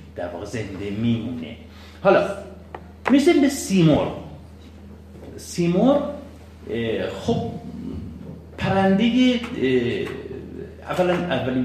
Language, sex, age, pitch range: Persian, male, 50-69, 90-120 Hz